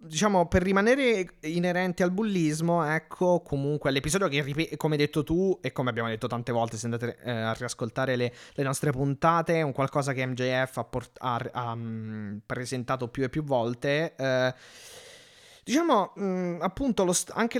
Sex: male